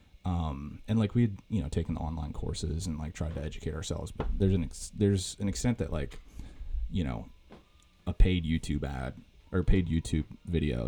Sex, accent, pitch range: male, American, 80-100 Hz